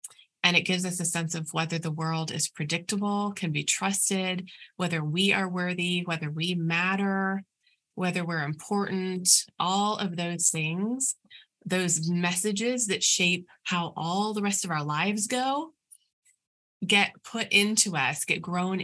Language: English